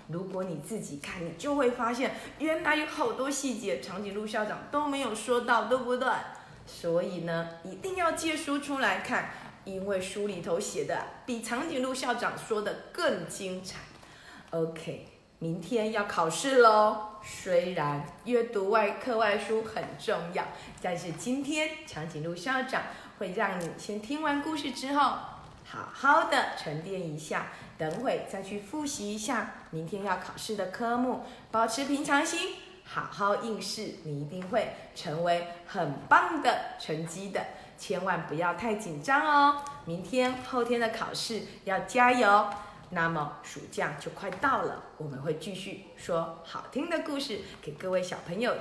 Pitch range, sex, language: 175-275 Hz, female, Chinese